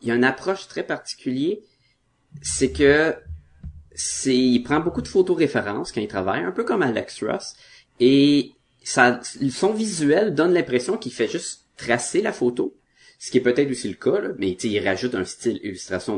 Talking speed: 180 wpm